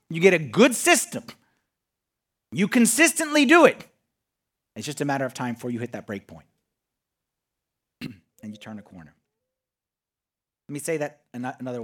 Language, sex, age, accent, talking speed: English, male, 40-59, American, 155 wpm